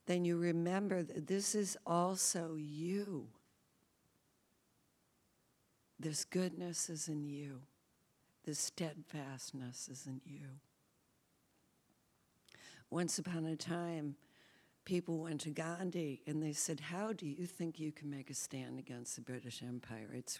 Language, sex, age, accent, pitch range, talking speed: English, female, 60-79, American, 140-165 Hz, 125 wpm